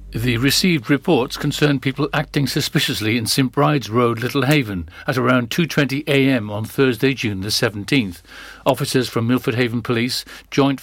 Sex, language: male, English